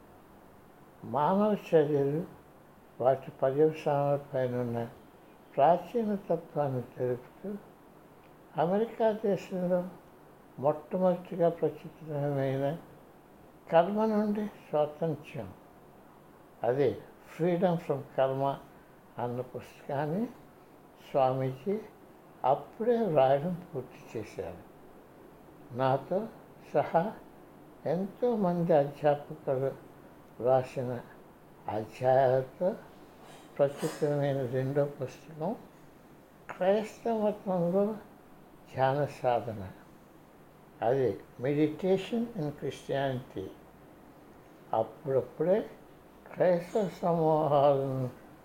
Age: 60-79